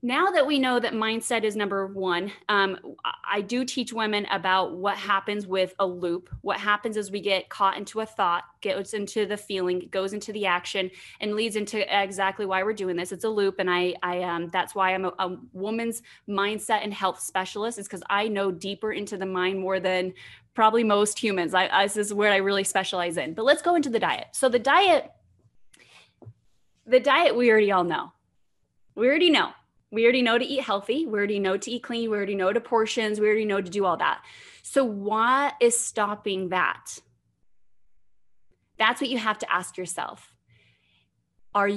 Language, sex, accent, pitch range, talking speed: English, female, American, 190-230 Hz, 200 wpm